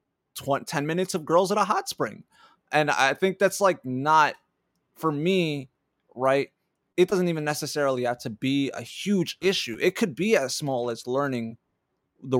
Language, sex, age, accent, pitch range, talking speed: English, male, 20-39, American, 125-170 Hz, 170 wpm